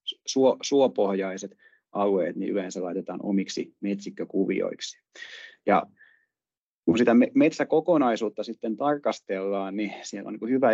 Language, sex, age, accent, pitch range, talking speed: Finnish, male, 30-49, native, 95-115 Hz, 100 wpm